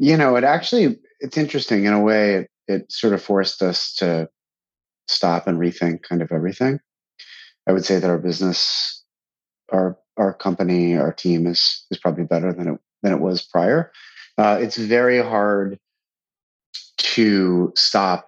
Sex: male